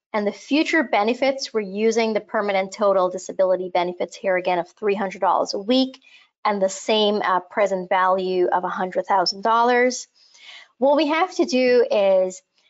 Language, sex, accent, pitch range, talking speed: English, female, American, 195-255 Hz, 145 wpm